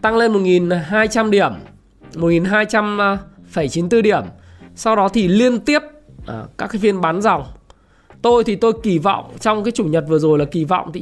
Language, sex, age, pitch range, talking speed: Vietnamese, male, 20-39, 155-215 Hz, 170 wpm